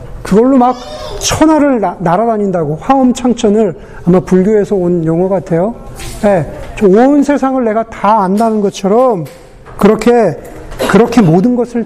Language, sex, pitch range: Korean, male, 170-220 Hz